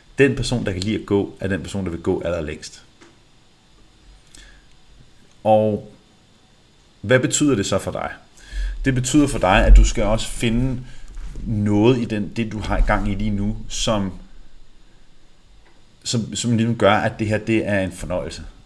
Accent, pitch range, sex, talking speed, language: native, 100-125 Hz, male, 165 wpm, Danish